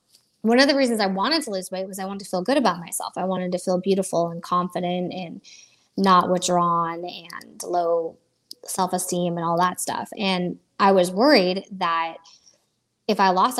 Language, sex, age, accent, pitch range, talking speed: English, female, 20-39, American, 175-210 Hz, 185 wpm